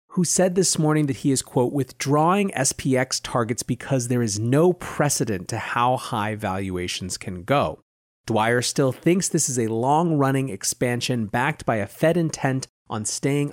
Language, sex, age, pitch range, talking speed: English, male, 30-49, 110-150 Hz, 165 wpm